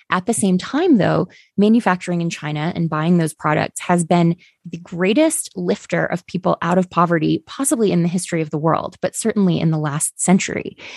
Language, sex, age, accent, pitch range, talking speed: English, female, 20-39, American, 160-185 Hz, 190 wpm